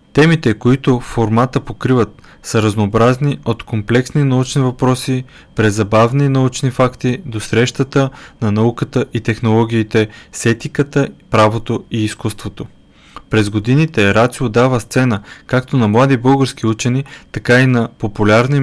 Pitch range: 110-130 Hz